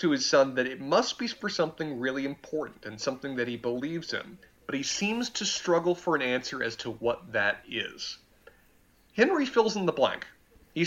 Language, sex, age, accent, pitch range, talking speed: English, male, 30-49, American, 130-175 Hz, 200 wpm